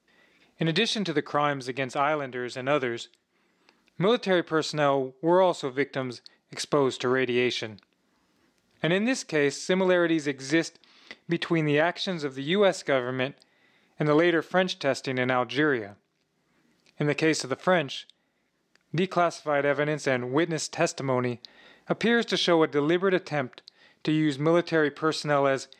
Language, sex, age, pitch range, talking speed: English, male, 30-49, 130-165 Hz, 135 wpm